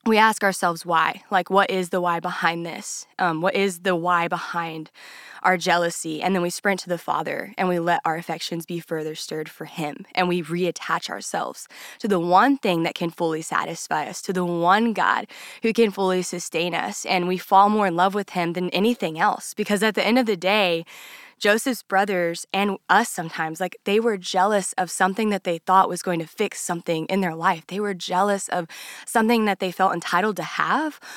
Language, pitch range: English, 170-200 Hz